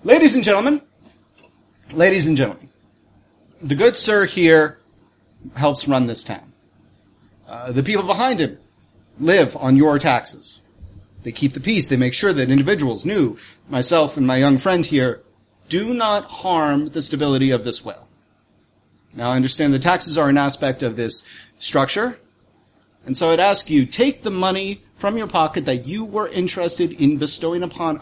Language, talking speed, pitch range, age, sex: English, 165 wpm, 115-175 Hz, 30-49, male